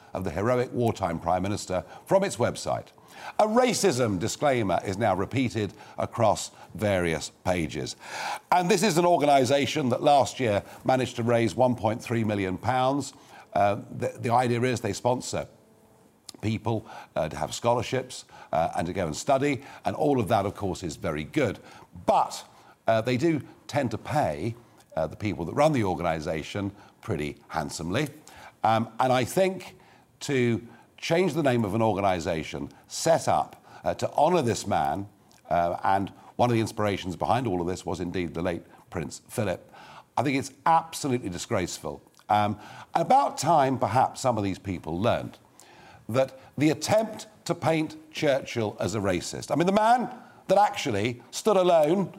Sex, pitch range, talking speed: male, 100-140 Hz, 160 wpm